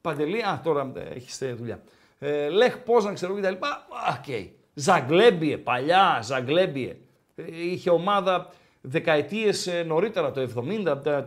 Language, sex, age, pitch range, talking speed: Greek, male, 50-69, 160-220 Hz, 110 wpm